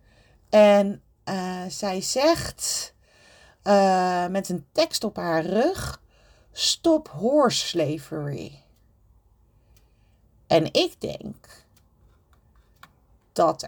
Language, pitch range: Dutch, 150-215 Hz